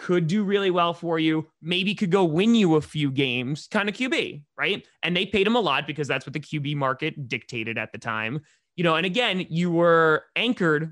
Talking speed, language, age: 225 wpm, English, 20-39